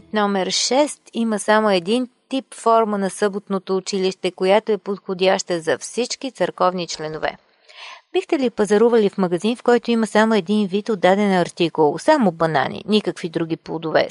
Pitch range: 190-230 Hz